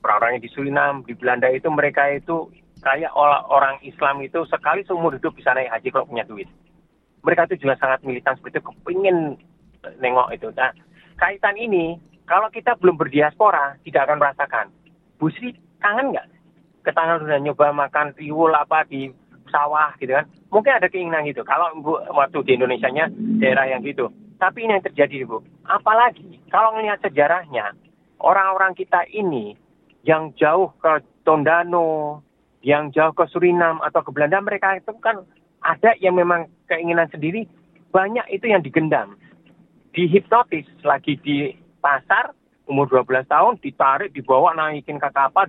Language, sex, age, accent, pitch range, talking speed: Indonesian, male, 30-49, native, 145-185 Hz, 150 wpm